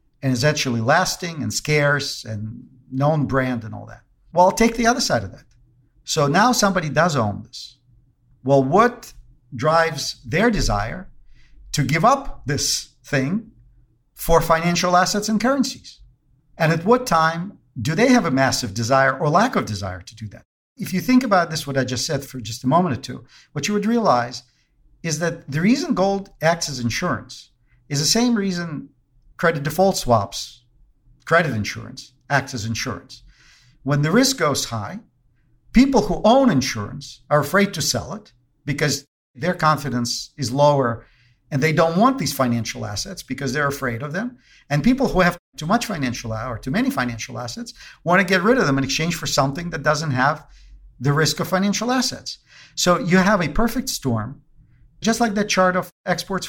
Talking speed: 180 wpm